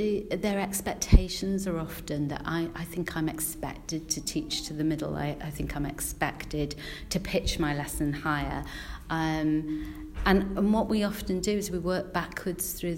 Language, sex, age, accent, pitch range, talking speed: English, female, 40-59, British, 155-190 Hz, 170 wpm